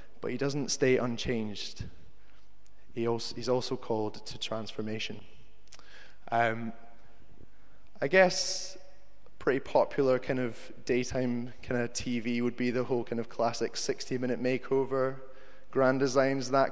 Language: English